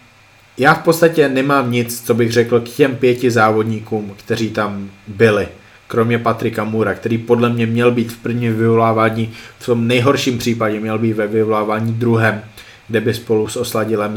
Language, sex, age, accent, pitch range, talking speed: Czech, male, 20-39, native, 110-120 Hz, 170 wpm